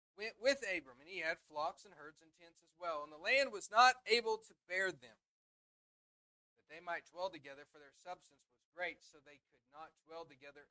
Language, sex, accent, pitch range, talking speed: English, male, American, 150-185 Hz, 215 wpm